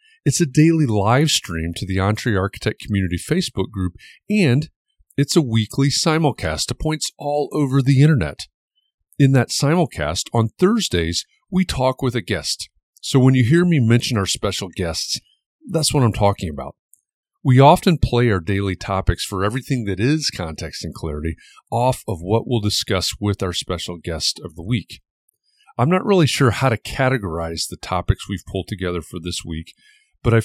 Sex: male